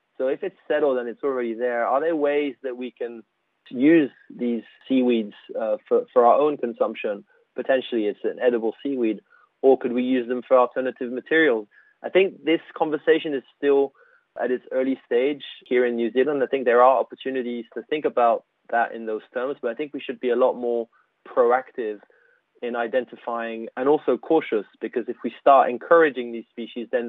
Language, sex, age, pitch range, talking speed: English, male, 20-39, 120-150 Hz, 190 wpm